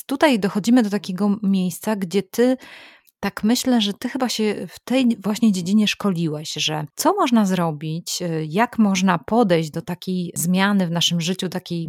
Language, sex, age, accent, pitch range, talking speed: Polish, female, 20-39, native, 175-215 Hz, 160 wpm